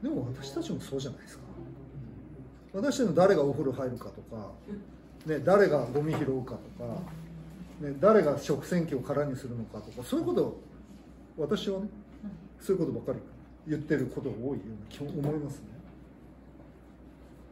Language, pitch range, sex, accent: Japanese, 140-230 Hz, male, native